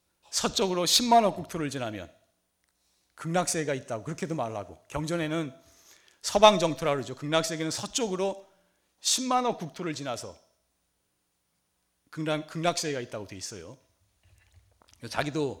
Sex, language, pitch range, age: male, Korean, 95-160 Hz, 40-59